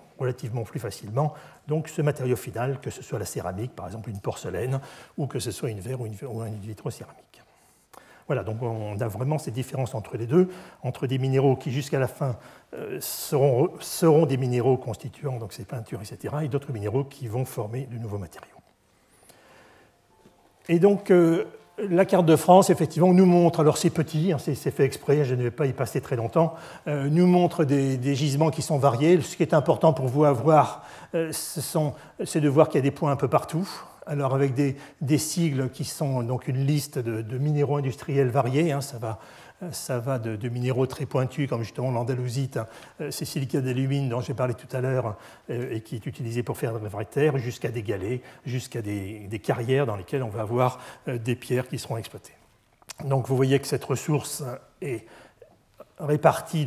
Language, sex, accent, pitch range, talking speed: French, male, French, 125-150 Hz, 205 wpm